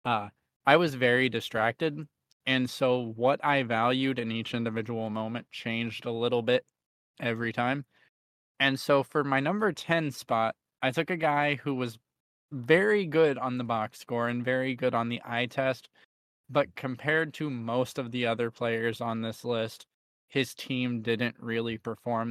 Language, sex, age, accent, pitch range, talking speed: English, male, 20-39, American, 115-135 Hz, 165 wpm